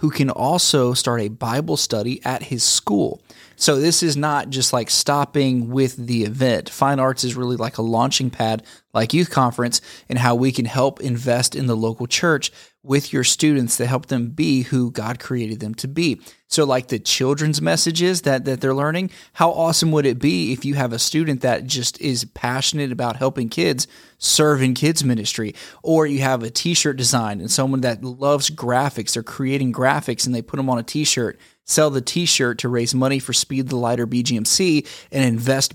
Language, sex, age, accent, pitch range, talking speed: English, male, 30-49, American, 120-140 Hz, 200 wpm